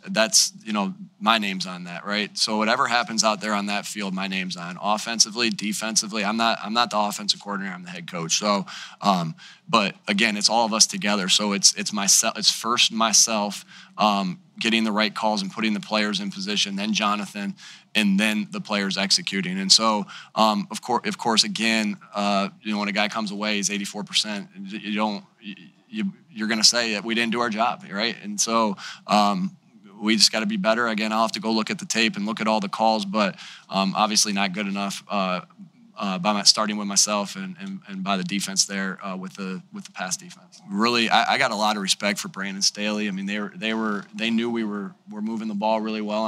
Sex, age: male, 20-39